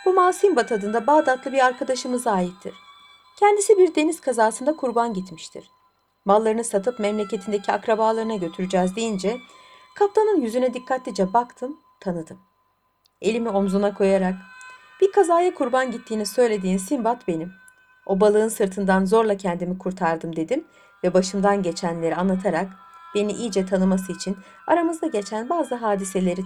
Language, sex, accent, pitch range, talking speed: Turkish, female, native, 190-260 Hz, 120 wpm